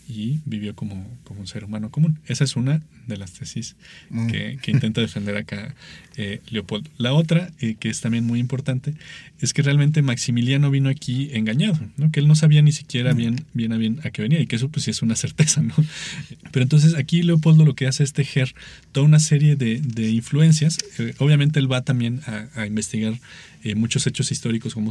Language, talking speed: Spanish, 210 wpm